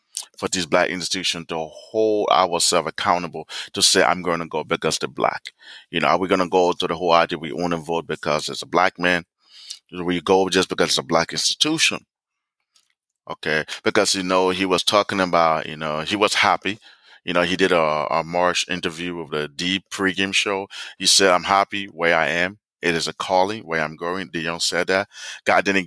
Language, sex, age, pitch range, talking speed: English, male, 30-49, 80-95 Hz, 210 wpm